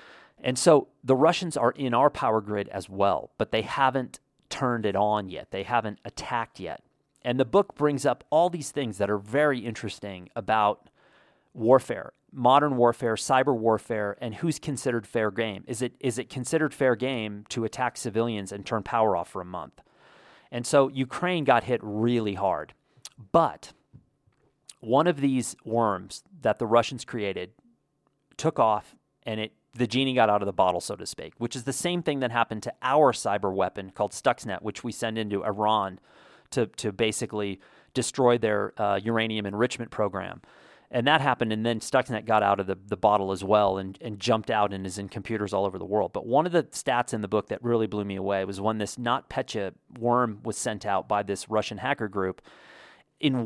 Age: 40-59